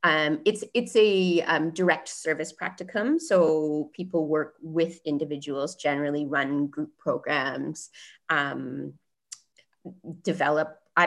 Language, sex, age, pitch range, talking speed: English, female, 30-49, 150-180 Hz, 110 wpm